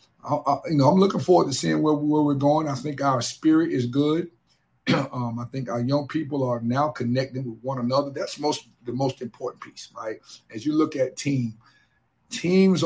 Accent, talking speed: American, 195 wpm